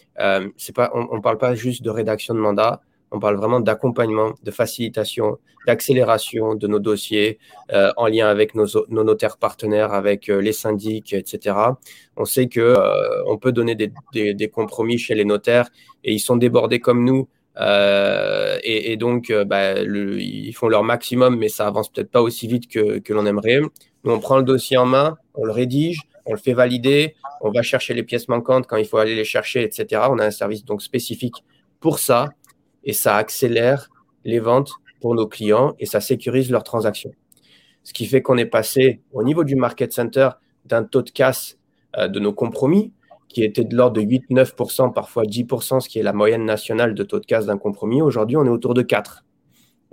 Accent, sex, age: French, male, 20-39